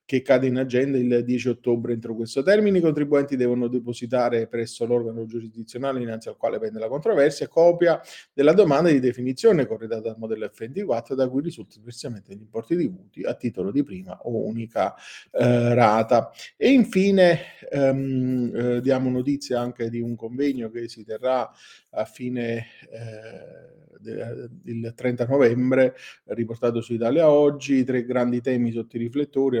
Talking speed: 160 wpm